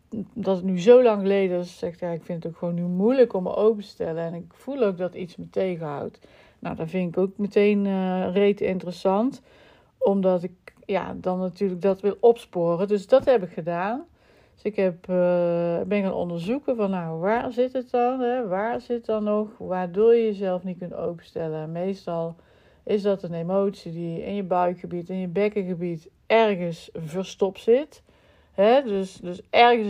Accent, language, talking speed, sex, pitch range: Dutch, Dutch, 185 wpm, female, 175-215 Hz